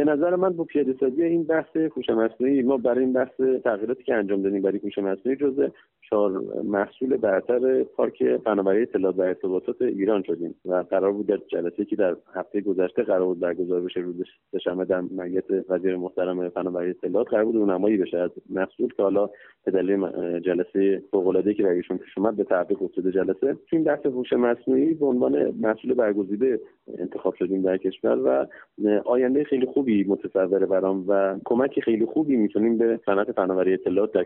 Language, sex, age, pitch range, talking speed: Persian, male, 30-49, 95-115 Hz, 175 wpm